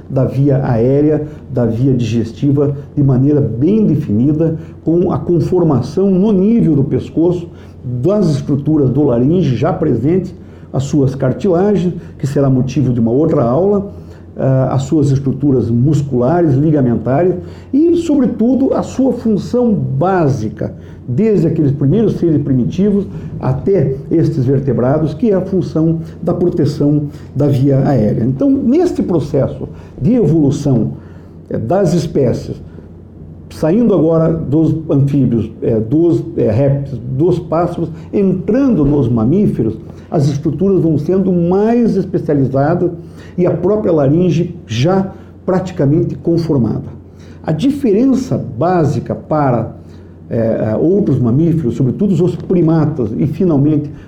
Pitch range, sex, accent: 130-175 Hz, male, Brazilian